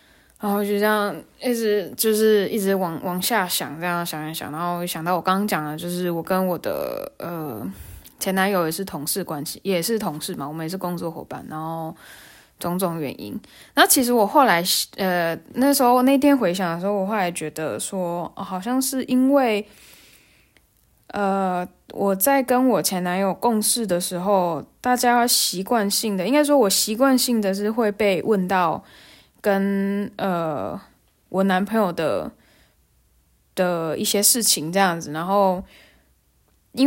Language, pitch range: Chinese, 170-220 Hz